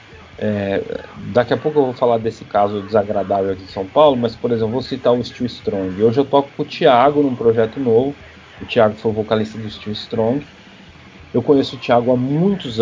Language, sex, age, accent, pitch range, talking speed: Portuguese, male, 40-59, Brazilian, 115-155 Hz, 200 wpm